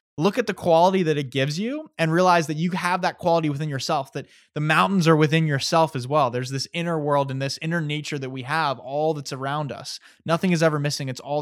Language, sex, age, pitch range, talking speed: English, male, 20-39, 130-165 Hz, 240 wpm